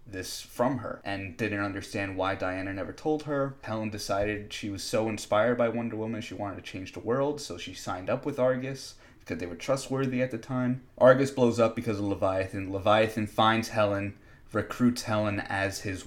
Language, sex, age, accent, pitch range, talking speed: English, male, 20-39, American, 95-110 Hz, 195 wpm